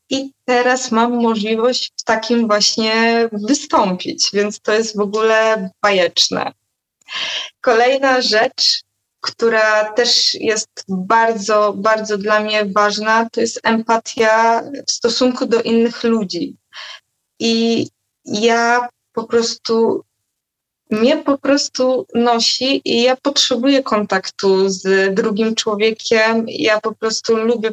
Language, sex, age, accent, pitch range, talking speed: Polish, female, 20-39, native, 210-235 Hz, 110 wpm